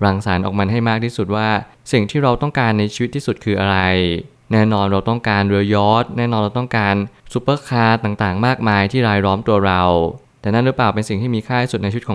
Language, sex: Thai, male